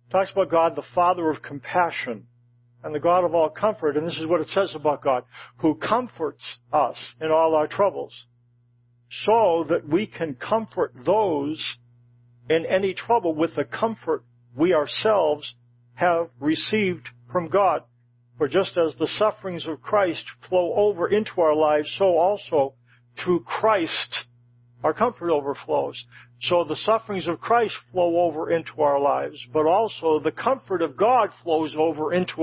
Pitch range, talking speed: 140-185 Hz, 155 wpm